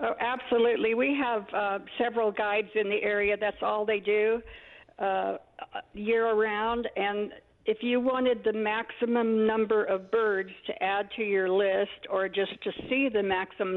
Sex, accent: female, American